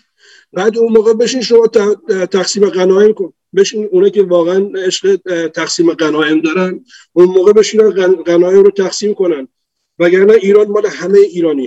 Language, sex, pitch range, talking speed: Persian, male, 140-200 Hz, 145 wpm